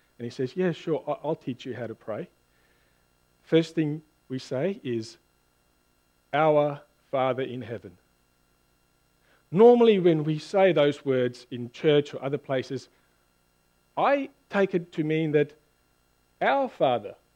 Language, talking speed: English, 135 wpm